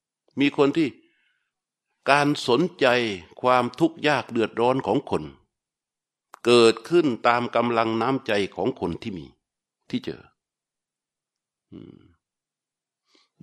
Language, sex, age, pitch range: Thai, male, 60-79, 115-160 Hz